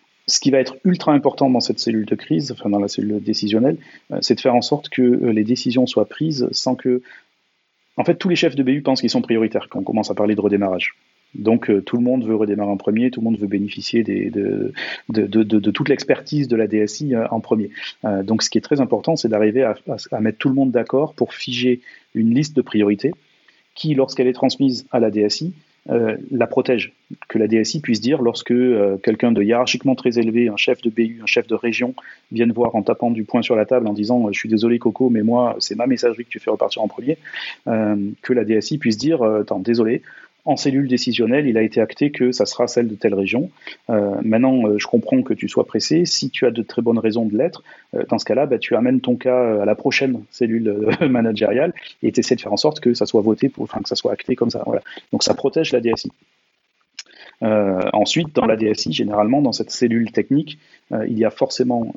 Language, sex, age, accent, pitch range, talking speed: French, male, 30-49, French, 110-130 Hz, 235 wpm